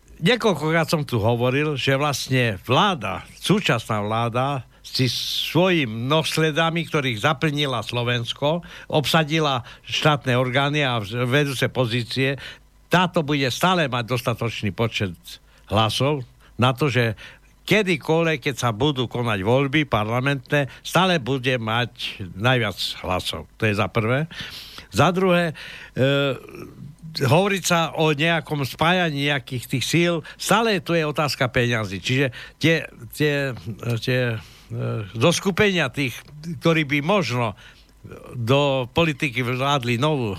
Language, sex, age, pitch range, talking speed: Slovak, male, 60-79, 120-155 Hz, 115 wpm